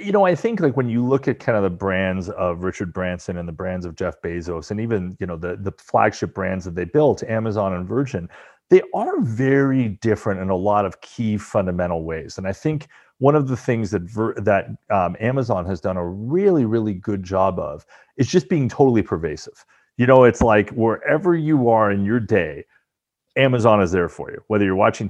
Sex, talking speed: male, 215 wpm